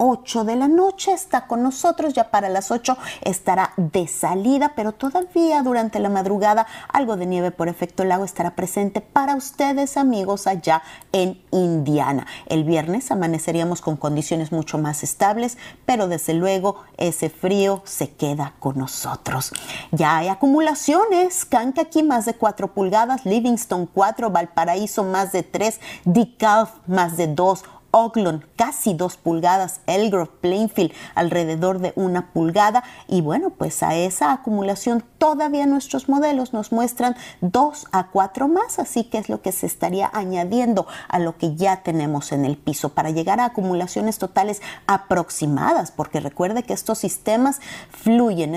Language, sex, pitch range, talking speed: Spanish, female, 175-240 Hz, 150 wpm